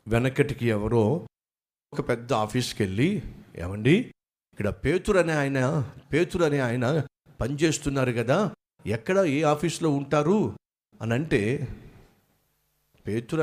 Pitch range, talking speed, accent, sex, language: 130-175 Hz, 105 wpm, native, male, Telugu